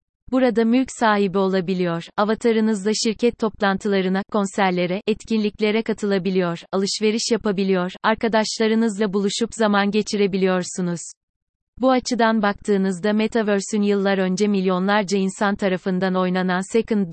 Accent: native